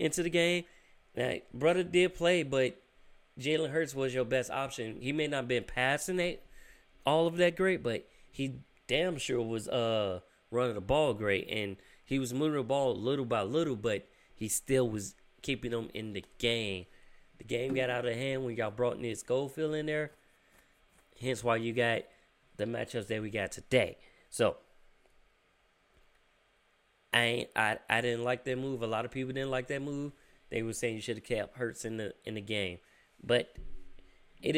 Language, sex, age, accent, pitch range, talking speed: English, male, 20-39, American, 115-140 Hz, 190 wpm